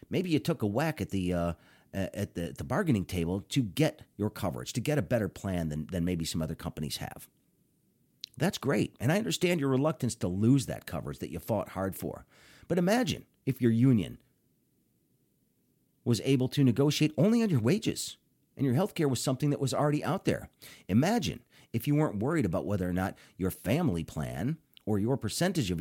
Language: English